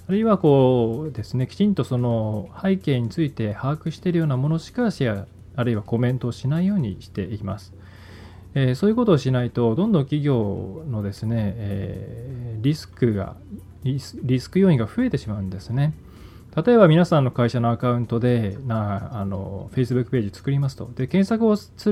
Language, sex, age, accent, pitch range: Japanese, male, 20-39, native, 105-155 Hz